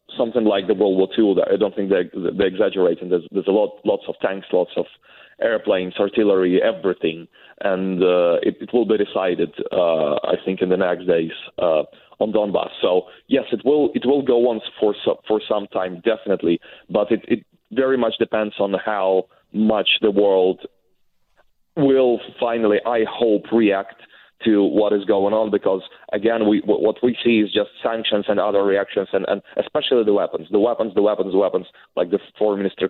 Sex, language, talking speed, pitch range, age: male, English, 190 wpm, 95-120 Hz, 30-49